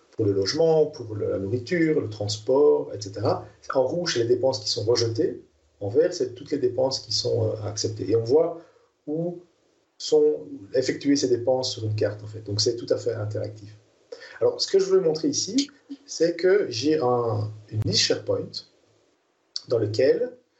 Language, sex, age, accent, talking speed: French, male, 50-69, French, 175 wpm